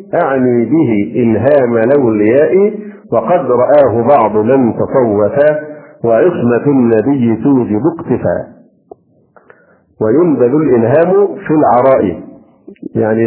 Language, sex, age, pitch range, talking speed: Arabic, male, 50-69, 115-155 Hz, 80 wpm